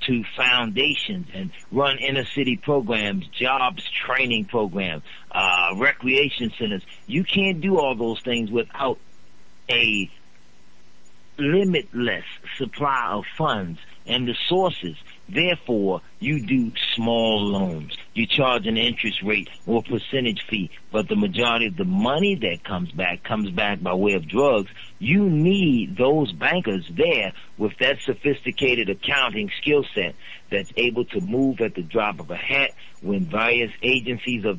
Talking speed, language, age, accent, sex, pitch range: 140 wpm, English, 50-69, American, male, 105-145 Hz